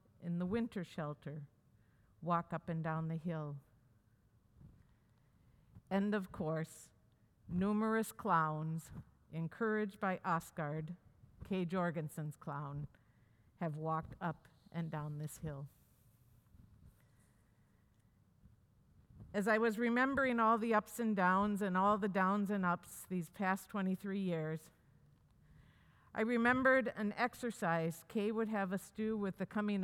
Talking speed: 120 wpm